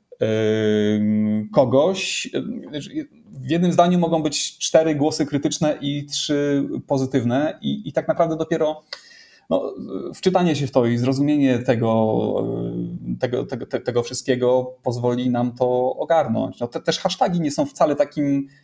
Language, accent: Polish, native